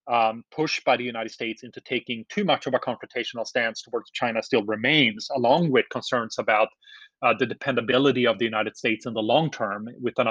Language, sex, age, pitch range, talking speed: English, male, 30-49, 110-135 Hz, 205 wpm